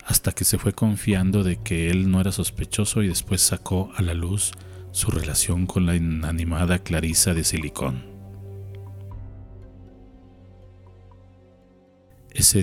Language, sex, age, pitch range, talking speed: Spanish, male, 40-59, 85-120 Hz, 125 wpm